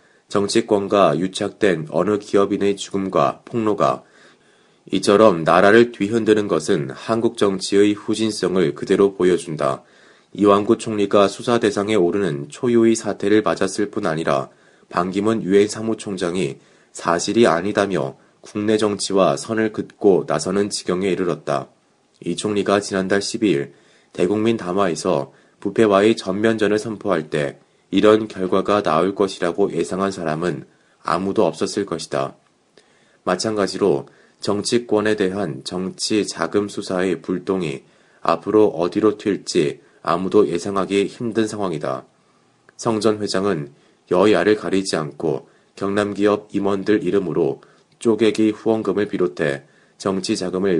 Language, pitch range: Korean, 95-110 Hz